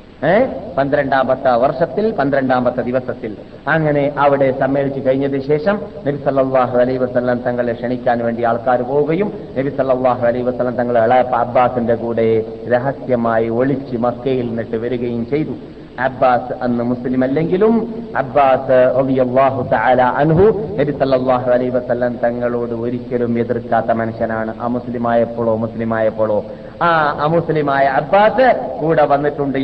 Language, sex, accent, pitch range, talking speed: Malayalam, male, native, 125-170 Hz, 90 wpm